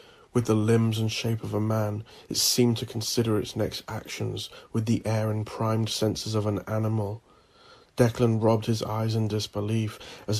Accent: British